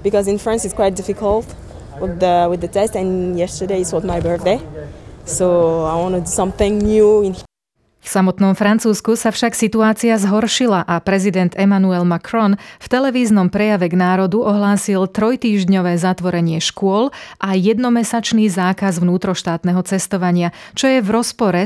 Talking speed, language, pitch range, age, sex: 150 wpm, Slovak, 155-205 Hz, 20-39, female